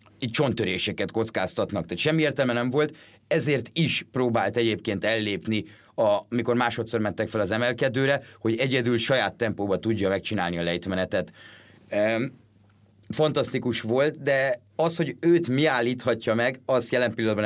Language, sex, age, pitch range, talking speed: Hungarian, male, 30-49, 105-125 Hz, 135 wpm